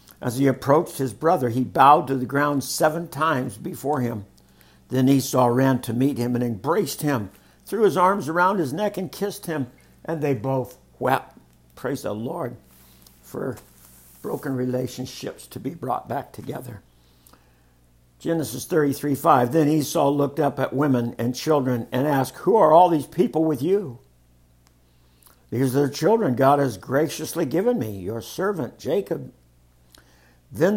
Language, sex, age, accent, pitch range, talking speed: English, male, 60-79, American, 115-155 Hz, 155 wpm